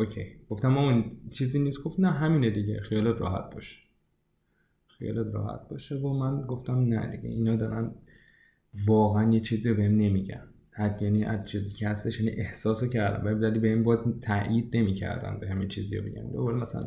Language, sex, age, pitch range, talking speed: Persian, male, 20-39, 100-115 Hz, 170 wpm